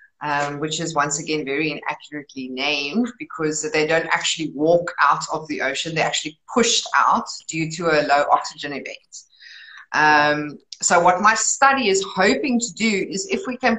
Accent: Australian